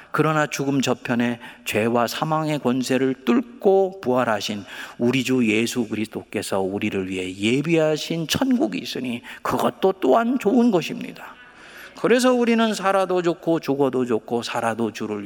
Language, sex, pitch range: Korean, male, 155-245 Hz